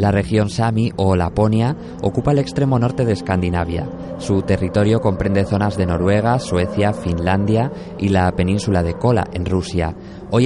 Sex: male